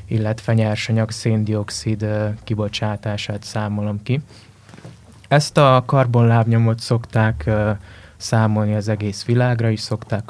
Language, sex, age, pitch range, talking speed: Hungarian, male, 20-39, 105-120 Hz, 95 wpm